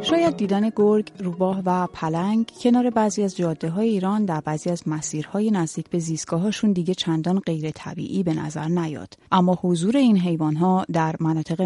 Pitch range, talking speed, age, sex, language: 165-220 Hz, 170 wpm, 30-49, female, Persian